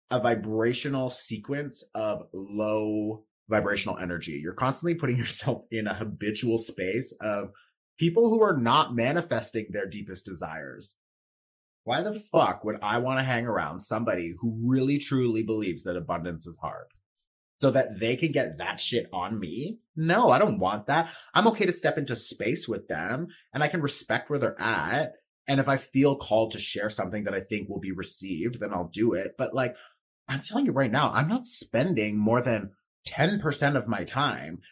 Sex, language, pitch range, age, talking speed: male, English, 110-145 Hz, 30-49, 180 wpm